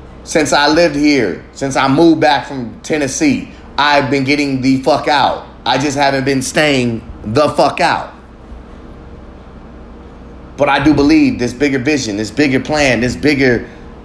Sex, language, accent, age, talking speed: male, English, American, 30-49, 155 wpm